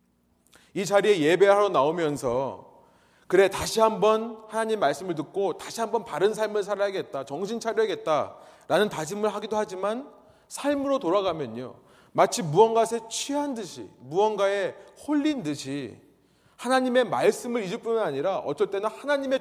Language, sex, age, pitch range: Korean, male, 30-49, 165-240 Hz